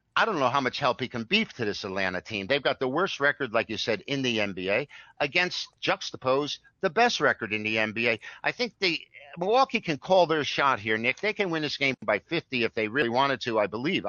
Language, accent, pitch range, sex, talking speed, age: English, American, 120-155 Hz, male, 240 wpm, 50-69